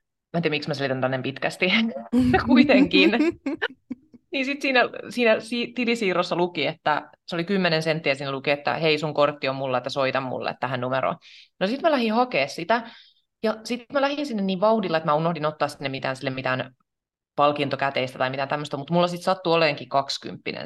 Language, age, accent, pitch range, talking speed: Finnish, 20-39, native, 145-220 Hz, 185 wpm